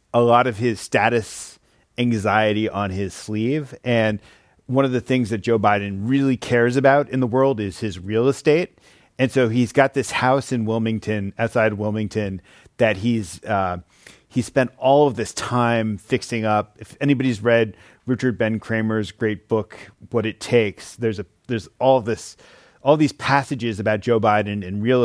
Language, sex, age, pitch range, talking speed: English, male, 30-49, 110-130 Hz, 170 wpm